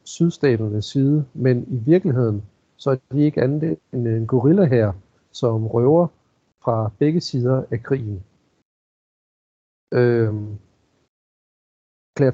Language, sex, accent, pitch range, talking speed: Danish, male, native, 110-140 Hz, 110 wpm